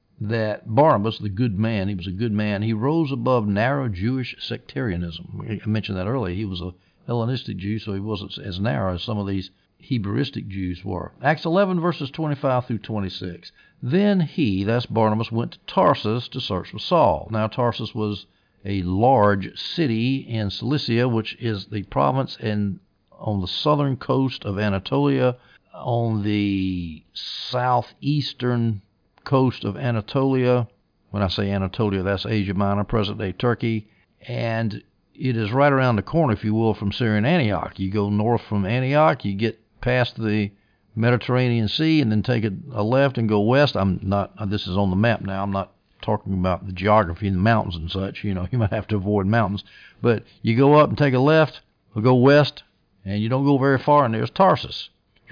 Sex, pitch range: male, 100-125 Hz